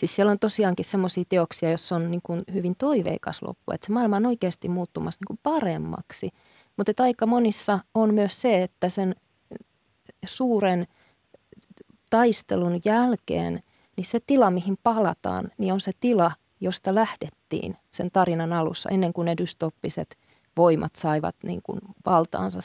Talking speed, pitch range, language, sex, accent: 140 wpm, 165-200 Hz, Finnish, female, native